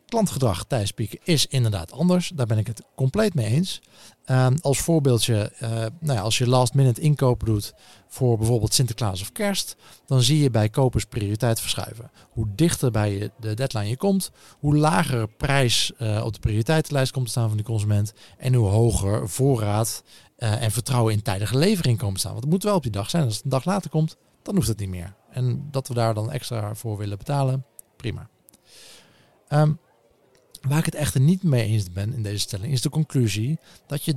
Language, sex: Dutch, male